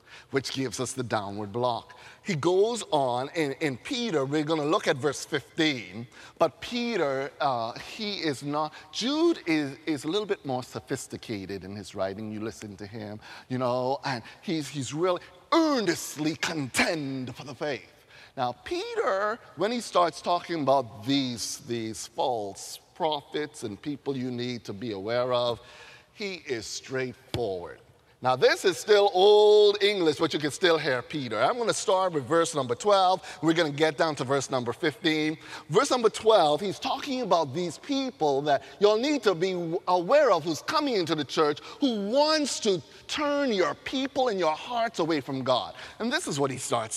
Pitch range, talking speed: 135-205 Hz, 175 wpm